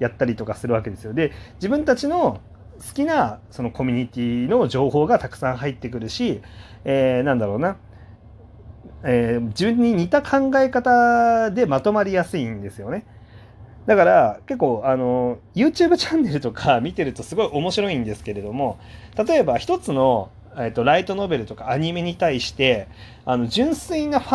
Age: 30-49